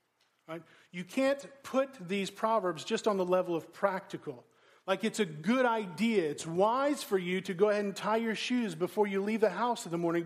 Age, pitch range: 40-59, 175-225 Hz